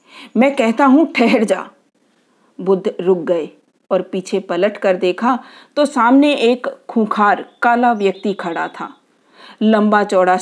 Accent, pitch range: native, 190-265 Hz